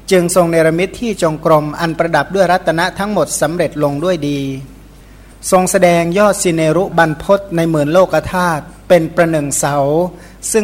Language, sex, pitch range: Thai, male, 145-180 Hz